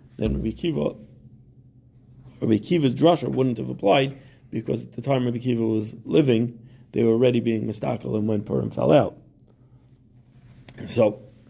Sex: male